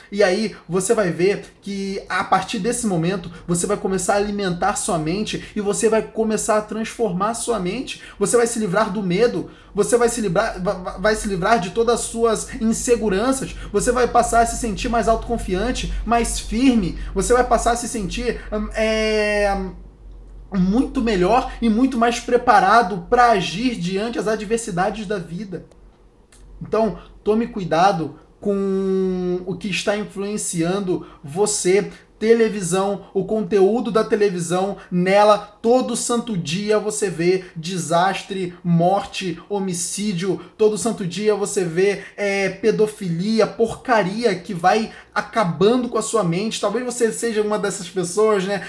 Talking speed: 145 wpm